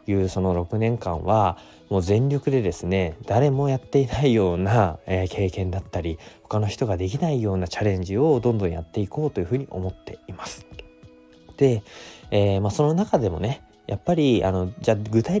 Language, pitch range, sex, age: Japanese, 90-115 Hz, male, 20-39